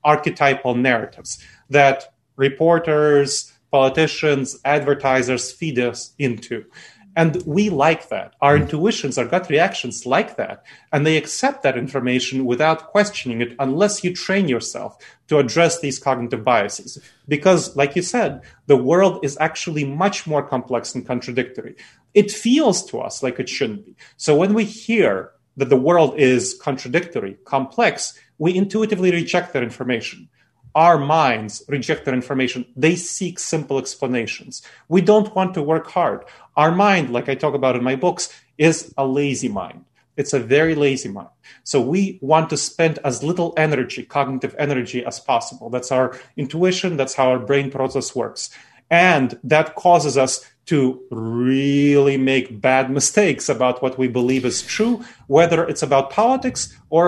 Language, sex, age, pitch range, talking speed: English, male, 30-49, 130-170 Hz, 155 wpm